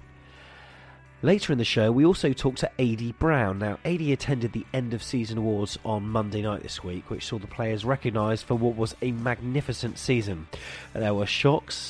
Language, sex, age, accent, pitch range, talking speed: English, male, 30-49, British, 100-135 Hz, 175 wpm